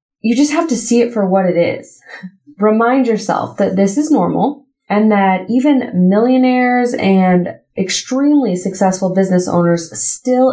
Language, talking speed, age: English, 150 wpm, 20-39